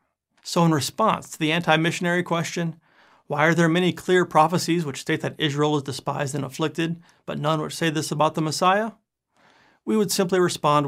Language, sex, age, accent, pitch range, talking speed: English, male, 30-49, American, 145-185 Hz, 180 wpm